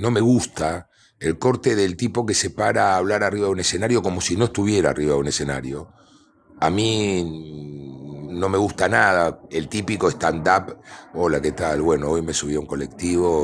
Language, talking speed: Spanish, 190 wpm